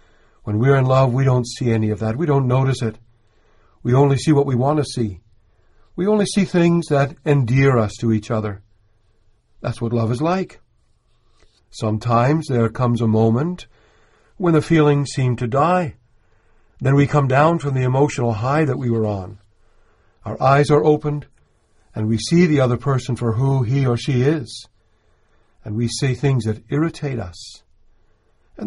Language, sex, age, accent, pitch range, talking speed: English, male, 60-79, American, 110-145 Hz, 175 wpm